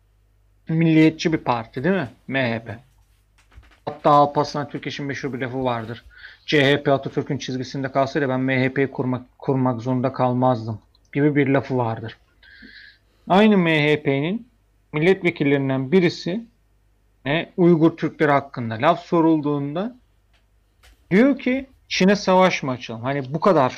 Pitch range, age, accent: 125-165 Hz, 40-59, native